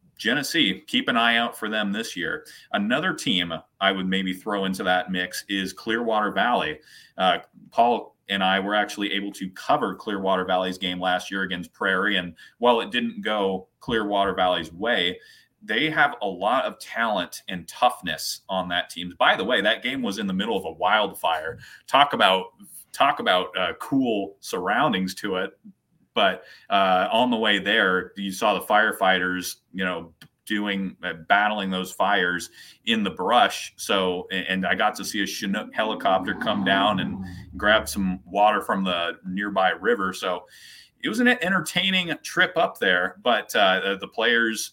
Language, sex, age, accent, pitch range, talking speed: English, male, 30-49, American, 95-120 Hz, 175 wpm